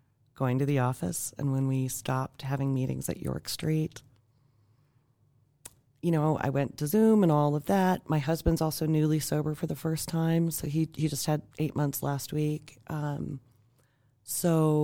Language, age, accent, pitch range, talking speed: English, 30-49, American, 130-150 Hz, 175 wpm